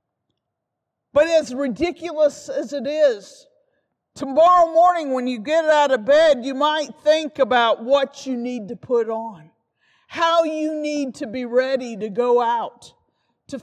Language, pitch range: English, 220-300 Hz